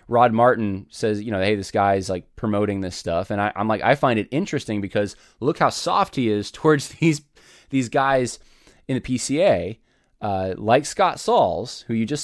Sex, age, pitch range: male, 20-39, 105-135 Hz